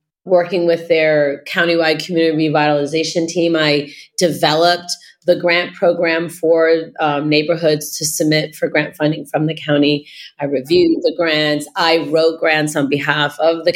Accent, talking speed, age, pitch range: American, 150 wpm, 30-49, 150-175 Hz